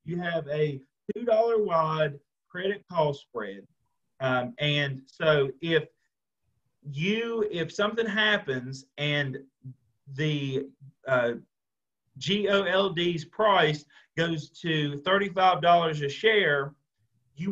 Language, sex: English, male